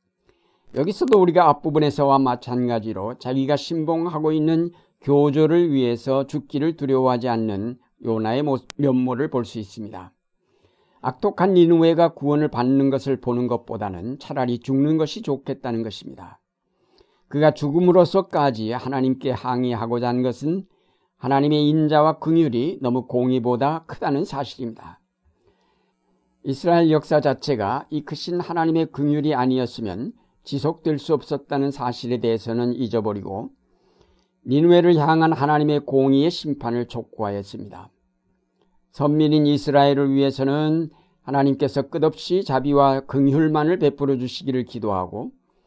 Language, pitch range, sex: Korean, 125-155 Hz, male